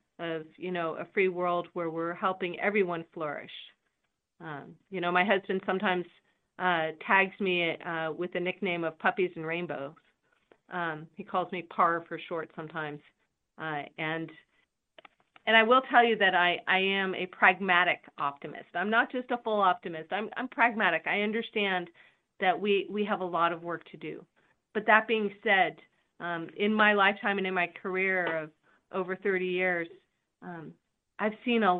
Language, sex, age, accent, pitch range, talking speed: English, female, 40-59, American, 175-210 Hz, 170 wpm